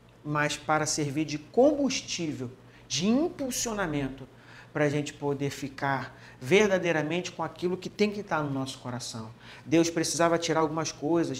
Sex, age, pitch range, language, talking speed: male, 40-59, 135-185 Hz, Portuguese, 140 wpm